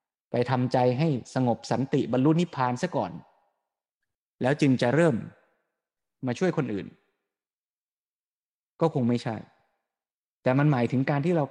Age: 20-39